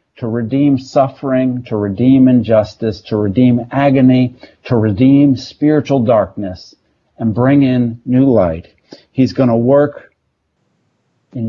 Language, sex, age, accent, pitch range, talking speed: English, male, 50-69, American, 105-135 Hz, 115 wpm